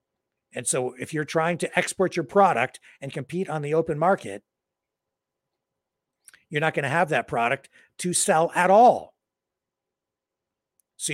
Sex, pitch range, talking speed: male, 125-165 Hz, 145 wpm